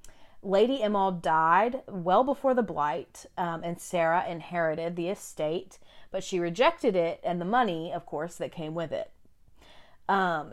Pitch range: 165-215 Hz